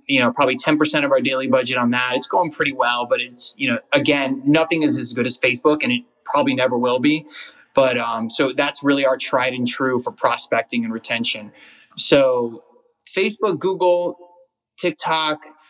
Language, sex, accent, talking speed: English, male, American, 185 wpm